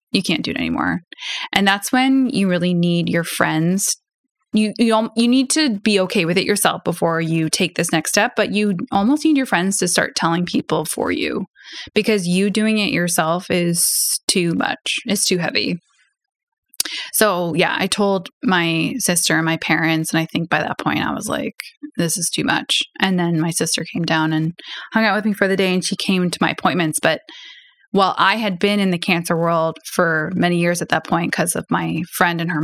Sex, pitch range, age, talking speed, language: female, 170-215 Hz, 20-39, 210 wpm, English